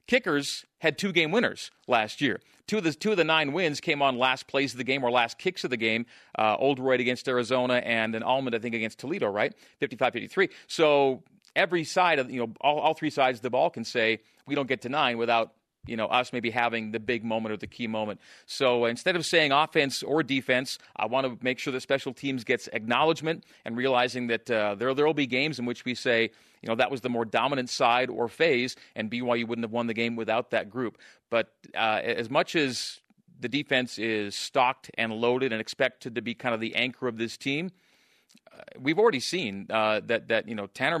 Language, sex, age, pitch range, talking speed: English, male, 40-59, 115-140 Hz, 230 wpm